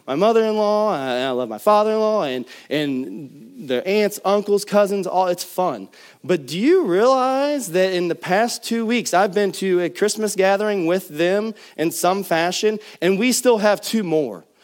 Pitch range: 170-215 Hz